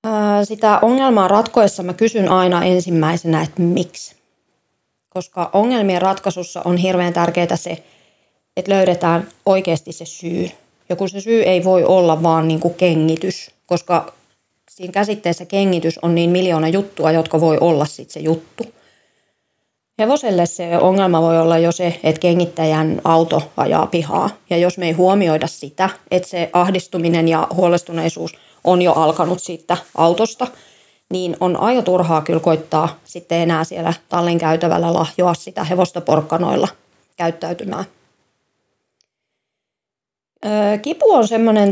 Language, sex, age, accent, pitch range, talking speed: Finnish, female, 30-49, native, 165-190 Hz, 130 wpm